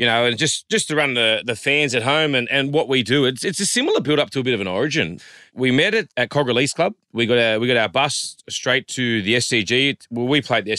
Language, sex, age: English, male, 30-49